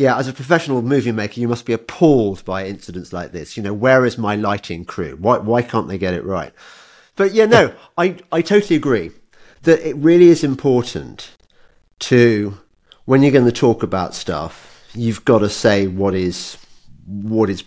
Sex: male